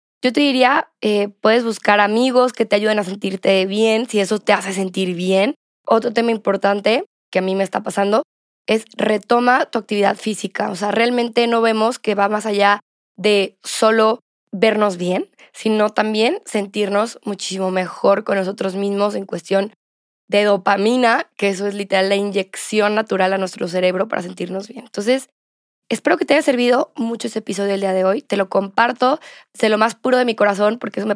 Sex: female